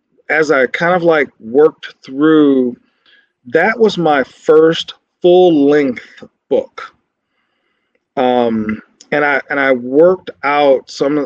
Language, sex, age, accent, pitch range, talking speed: English, male, 40-59, American, 130-170 Hz, 115 wpm